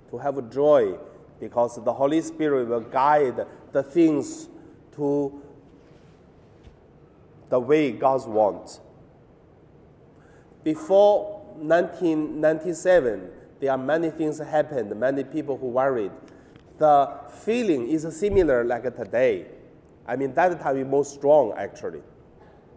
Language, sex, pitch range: Chinese, male, 120-155 Hz